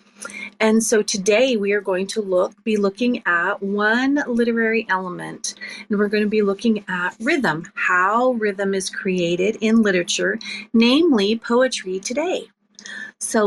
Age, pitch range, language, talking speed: 30-49, 195-235 Hz, English, 145 wpm